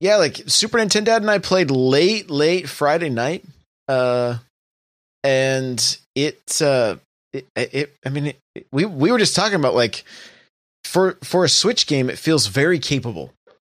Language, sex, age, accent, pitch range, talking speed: English, male, 20-39, American, 115-155 Hz, 150 wpm